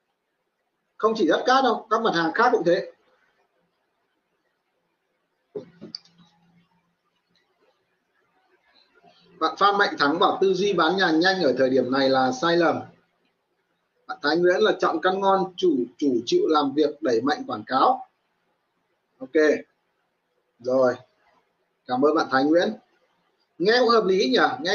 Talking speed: 140 wpm